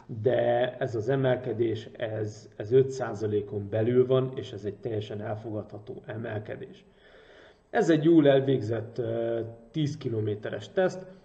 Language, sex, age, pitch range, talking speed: Hungarian, male, 30-49, 110-140 Hz, 125 wpm